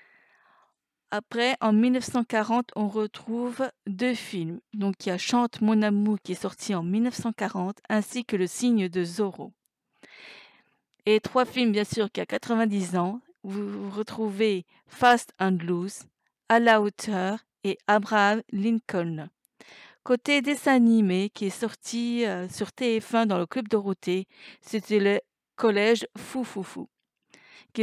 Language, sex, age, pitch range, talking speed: French, female, 50-69, 205-245 Hz, 135 wpm